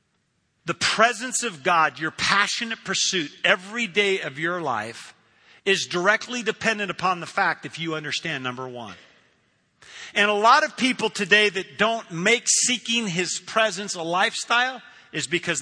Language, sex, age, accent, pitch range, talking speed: English, male, 50-69, American, 155-205 Hz, 150 wpm